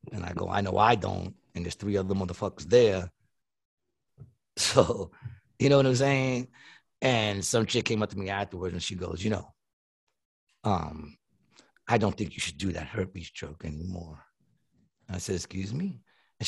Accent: American